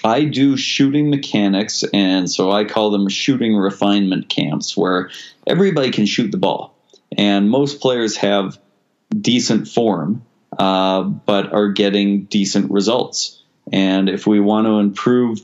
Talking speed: 140 wpm